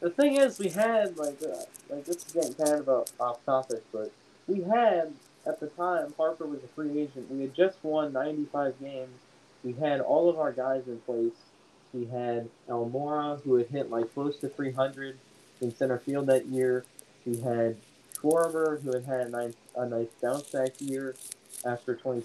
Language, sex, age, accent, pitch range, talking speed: English, male, 20-39, American, 120-145 Hz, 195 wpm